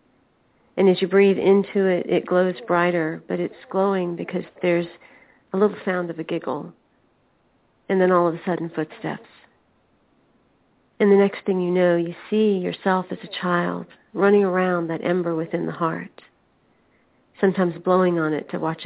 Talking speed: 165 wpm